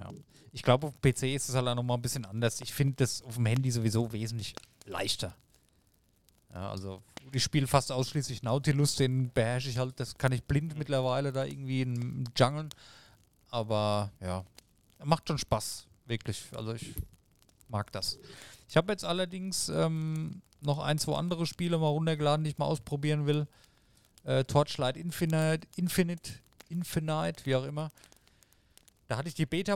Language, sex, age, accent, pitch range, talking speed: German, male, 40-59, German, 120-155 Hz, 170 wpm